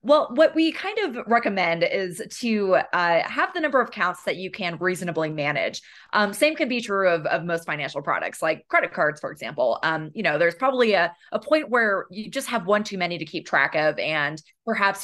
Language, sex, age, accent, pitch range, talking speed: English, female, 20-39, American, 170-220 Hz, 220 wpm